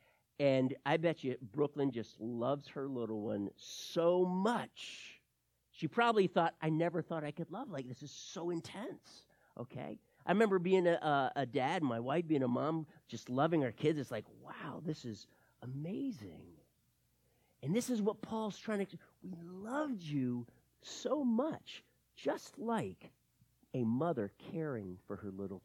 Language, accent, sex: English, American, male